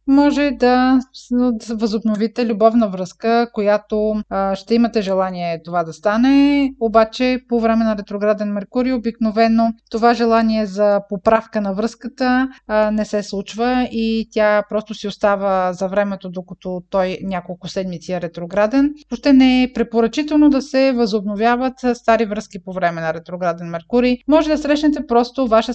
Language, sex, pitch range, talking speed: Bulgarian, female, 205-255 Hz, 140 wpm